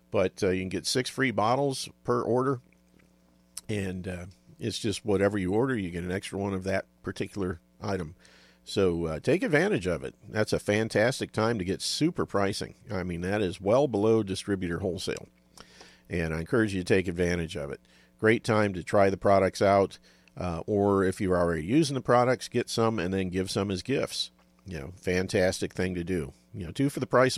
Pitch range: 85-110 Hz